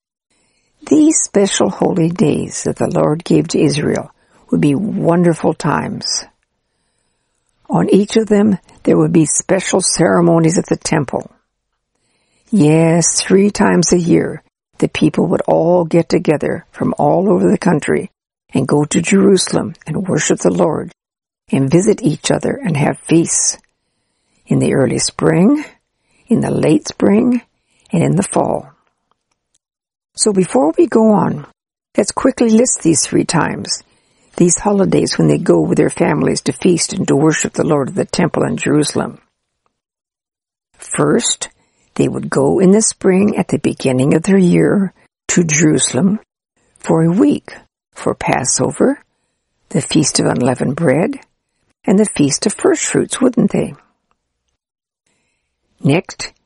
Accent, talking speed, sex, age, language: American, 140 wpm, female, 60-79, English